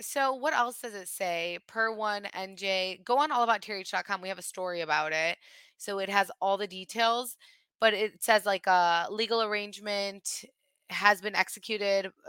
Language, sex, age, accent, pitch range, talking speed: English, female, 20-39, American, 185-230 Hz, 170 wpm